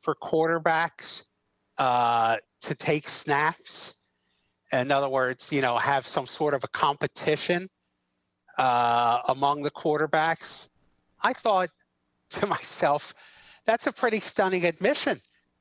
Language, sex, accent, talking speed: English, male, American, 115 wpm